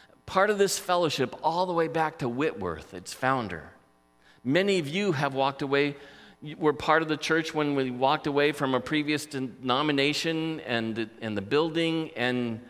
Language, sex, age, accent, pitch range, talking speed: English, male, 40-59, American, 105-150 Hz, 175 wpm